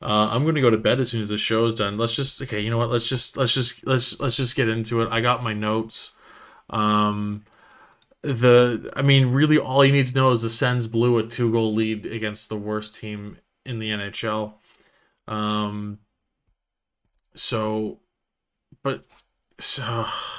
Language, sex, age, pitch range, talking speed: English, male, 20-39, 105-130 Hz, 180 wpm